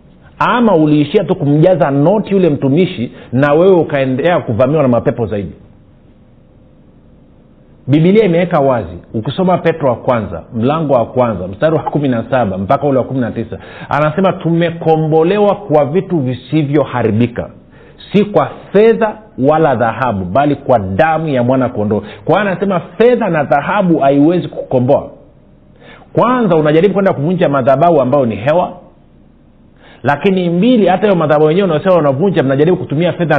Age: 50-69